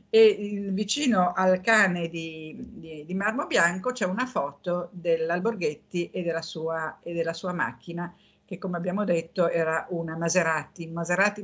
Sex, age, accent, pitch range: female, 50-69, native, 180-230 Hz